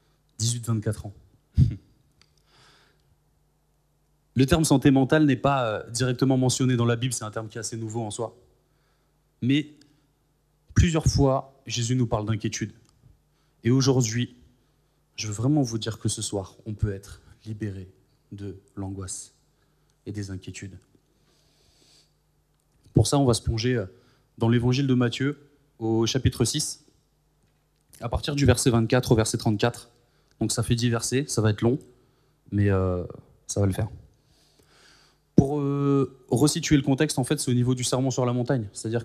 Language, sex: French, male